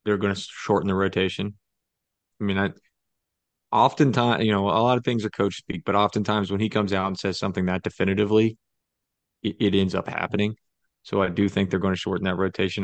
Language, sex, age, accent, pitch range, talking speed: English, male, 30-49, American, 95-115 Hz, 215 wpm